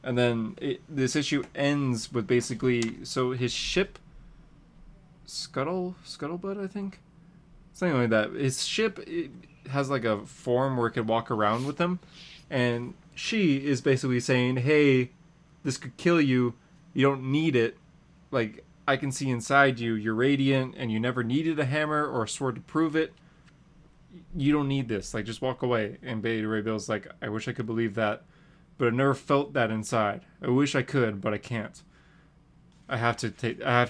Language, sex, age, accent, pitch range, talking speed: English, male, 20-39, American, 115-160 Hz, 185 wpm